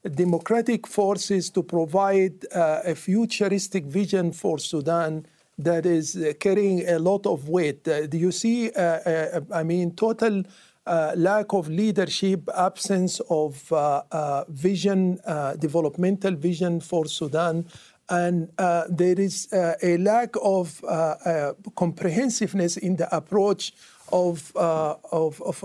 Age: 50-69